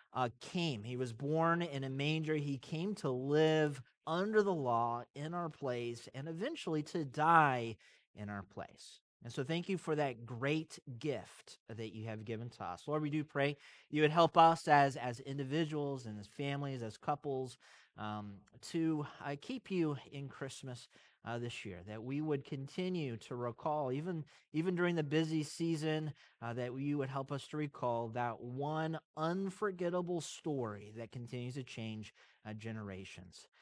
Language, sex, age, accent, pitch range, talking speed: English, male, 30-49, American, 125-165 Hz, 170 wpm